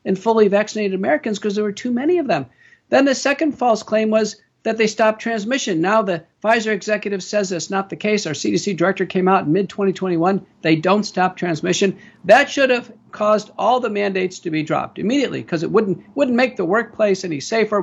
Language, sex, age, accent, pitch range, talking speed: English, male, 50-69, American, 190-240 Hz, 210 wpm